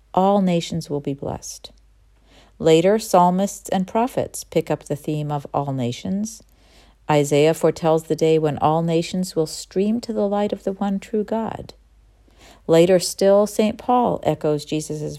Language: English